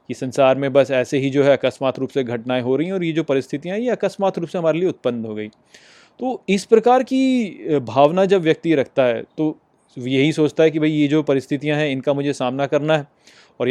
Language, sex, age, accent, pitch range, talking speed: Hindi, male, 30-49, native, 135-185 Hz, 235 wpm